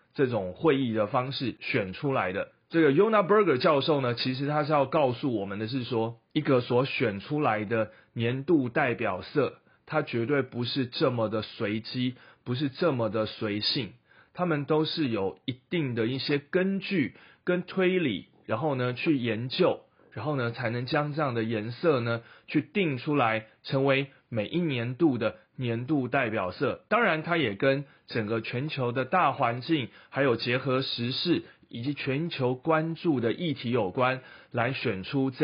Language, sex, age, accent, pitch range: Chinese, male, 30-49, native, 115-155 Hz